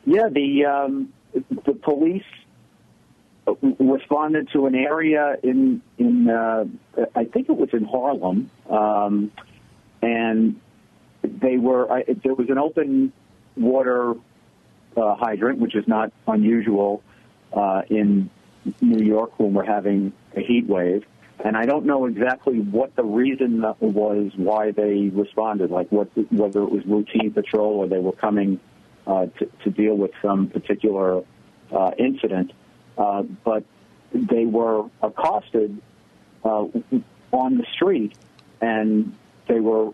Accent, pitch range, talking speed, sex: American, 105-125 Hz, 135 wpm, male